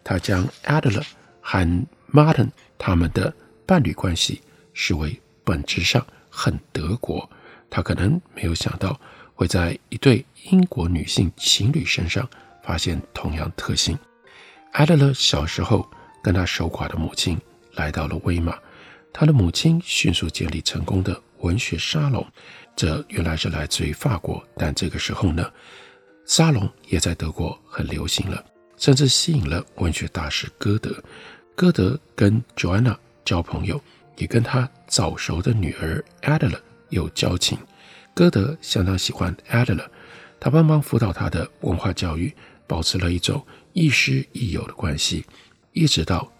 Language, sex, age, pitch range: Chinese, male, 50-69, 90-140 Hz